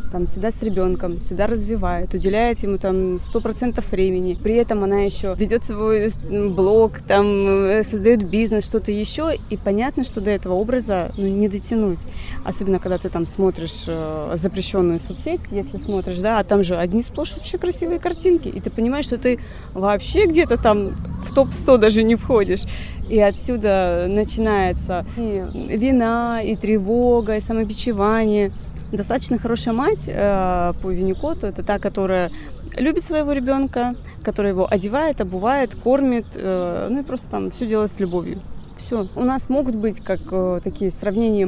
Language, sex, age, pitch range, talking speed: Russian, female, 20-39, 190-235 Hz, 155 wpm